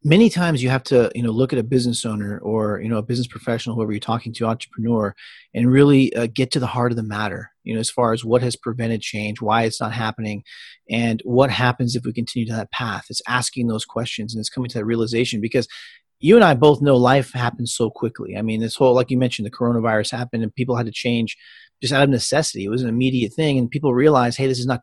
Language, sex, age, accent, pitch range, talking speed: English, male, 40-59, American, 115-130 Hz, 255 wpm